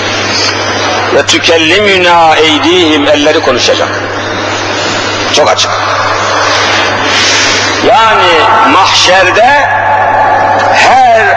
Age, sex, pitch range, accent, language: 50-69, male, 175-265 Hz, native, Turkish